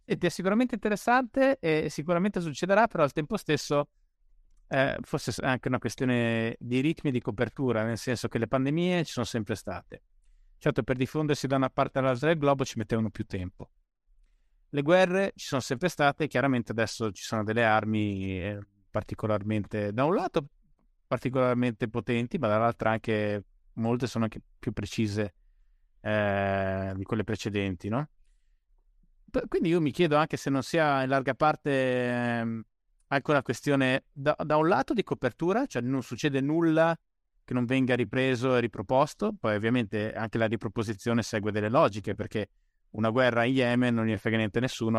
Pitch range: 105-140 Hz